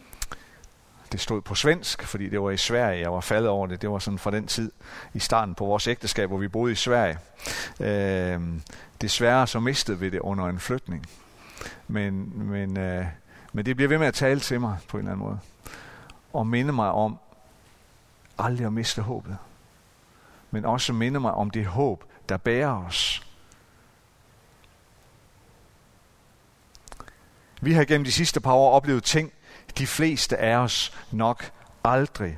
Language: Danish